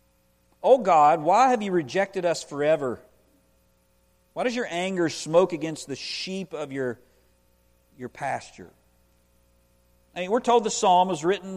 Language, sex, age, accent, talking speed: English, male, 50-69, American, 145 wpm